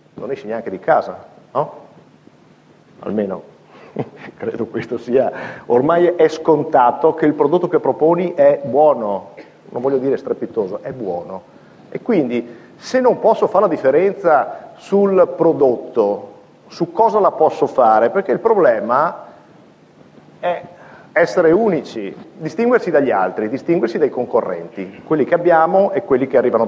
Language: Italian